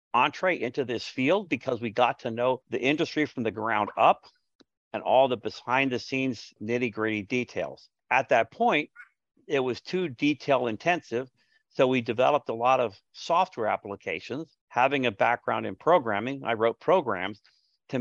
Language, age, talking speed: English, 50-69, 155 wpm